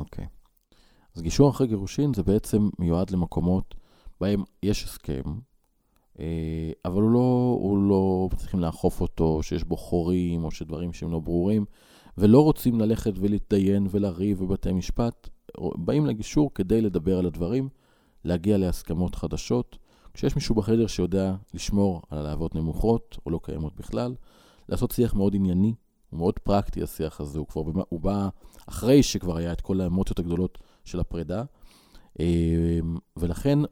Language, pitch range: Hebrew, 85-110 Hz